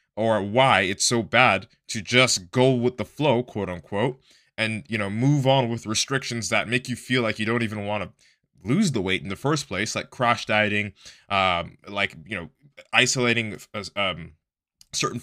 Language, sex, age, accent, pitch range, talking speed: English, male, 20-39, American, 105-125 Hz, 185 wpm